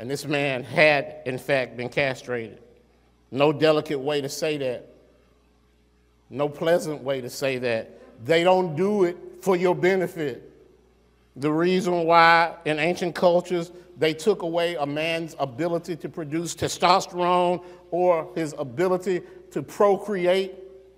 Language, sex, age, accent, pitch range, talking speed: English, male, 50-69, American, 150-190 Hz, 135 wpm